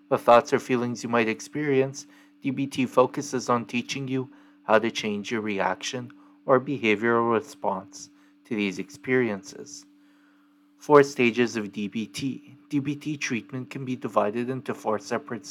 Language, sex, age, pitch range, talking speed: English, male, 30-49, 105-145 Hz, 130 wpm